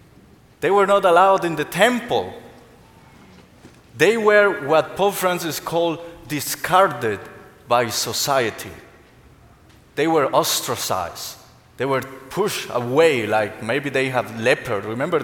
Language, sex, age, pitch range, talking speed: English, male, 30-49, 130-195 Hz, 115 wpm